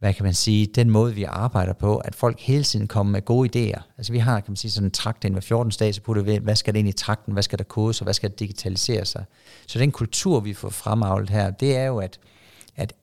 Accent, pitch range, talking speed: native, 105-130 Hz, 275 wpm